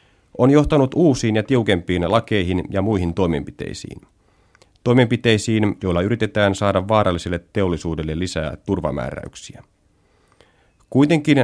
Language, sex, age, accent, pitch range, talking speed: Finnish, male, 30-49, native, 95-120 Hz, 95 wpm